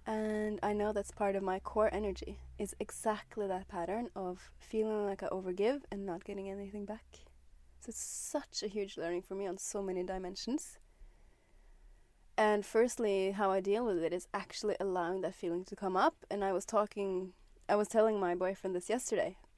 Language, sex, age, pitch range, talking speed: English, female, 20-39, 185-220 Hz, 185 wpm